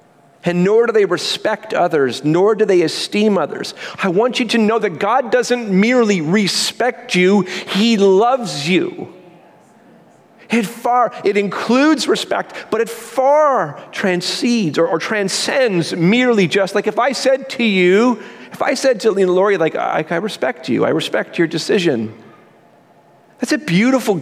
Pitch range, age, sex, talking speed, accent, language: 160-230 Hz, 40-59, male, 155 wpm, American, English